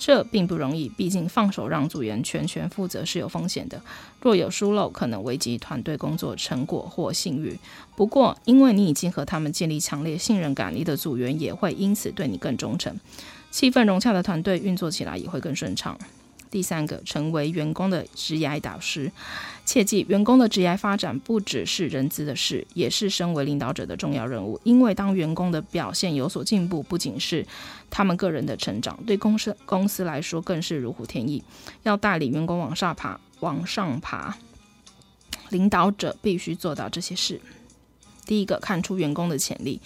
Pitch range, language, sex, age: 155-200 Hz, Chinese, female, 20-39